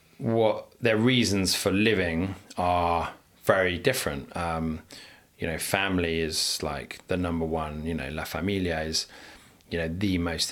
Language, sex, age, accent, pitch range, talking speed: English, male, 30-49, British, 80-95 Hz, 150 wpm